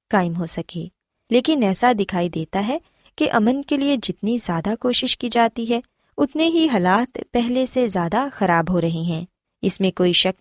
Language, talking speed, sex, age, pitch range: Urdu, 185 wpm, female, 20-39, 180-260 Hz